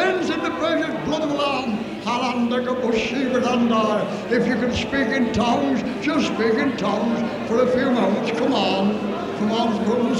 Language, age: English, 60-79